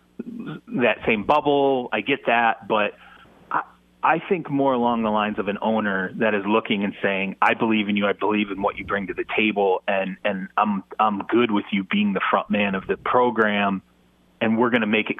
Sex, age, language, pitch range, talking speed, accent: male, 30-49, English, 100-140 Hz, 215 wpm, American